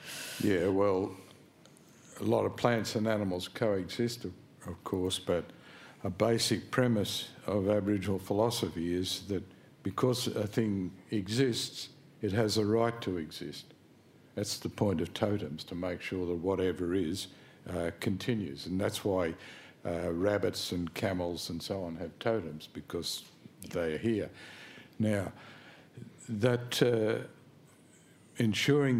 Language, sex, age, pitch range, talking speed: English, male, 60-79, 95-115 Hz, 130 wpm